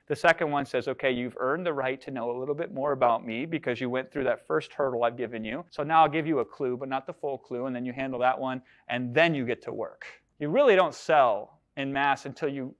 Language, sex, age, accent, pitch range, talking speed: English, male, 30-49, American, 130-165 Hz, 275 wpm